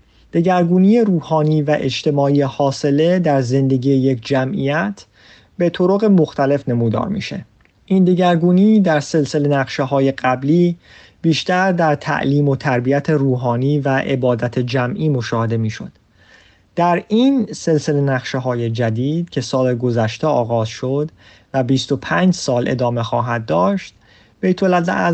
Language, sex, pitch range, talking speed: Persian, male, 125-160 Hz, 120 wpm